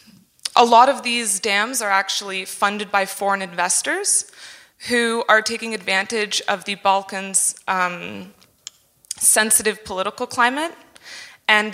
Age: 20-39